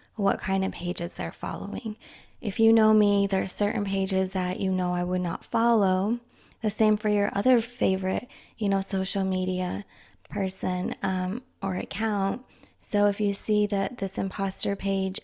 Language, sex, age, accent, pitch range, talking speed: English, female, 20-39, American, 185-215 Hz, 170 wpm